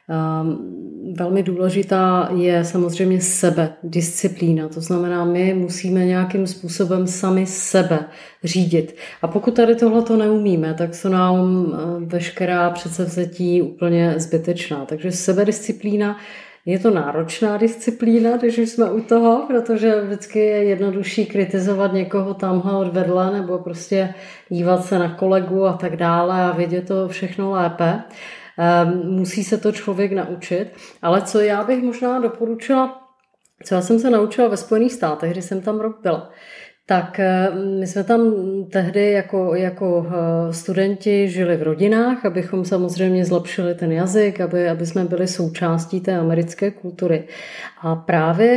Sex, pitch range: female, 175-210 Hz